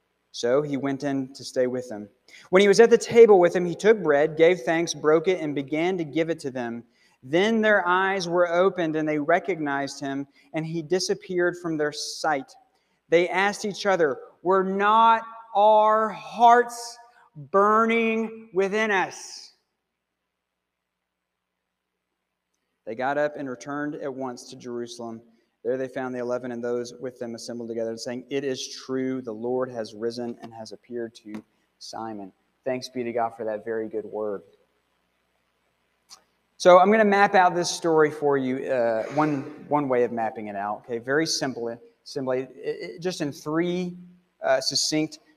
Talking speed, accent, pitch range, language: 165 wpm, American, 125-180 Hz, English